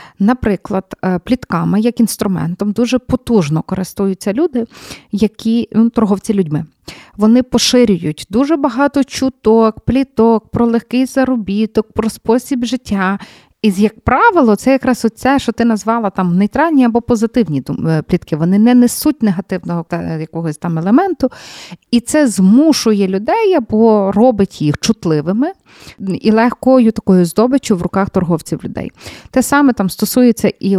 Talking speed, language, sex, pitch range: 125 wpm, Ukrainian, female, 185-245 Hz